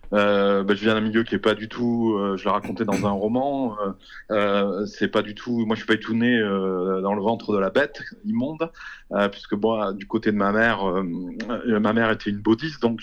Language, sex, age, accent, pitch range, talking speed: French, male, 30-49, French, 100-120 Hz, 255 wpm